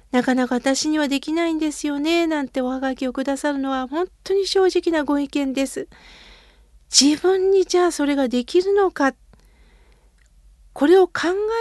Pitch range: 250-345 Hz